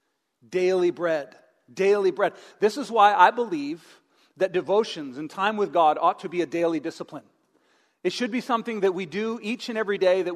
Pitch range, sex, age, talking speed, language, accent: 160-225 Hz, male, 40-59, 190 wpm, English, American